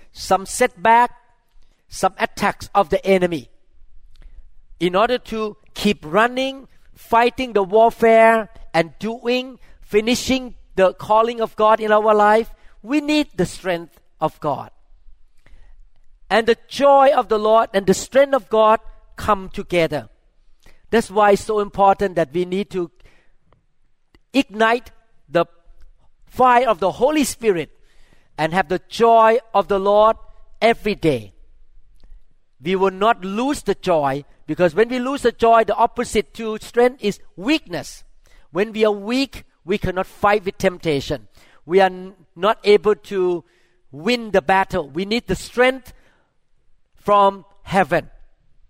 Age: 50-69